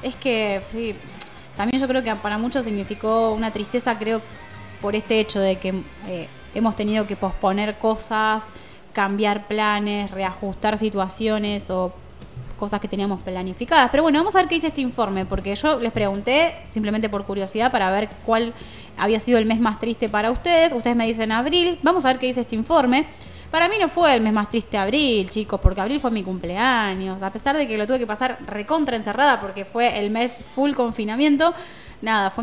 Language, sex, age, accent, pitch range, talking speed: Spanish, female, 20-39, Argentinian, 200-255 Hz, 190 wpm